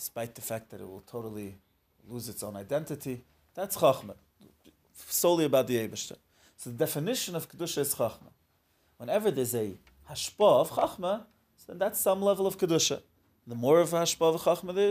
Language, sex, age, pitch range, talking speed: English, male, 30-49, 115-155 Hz, 175 wpm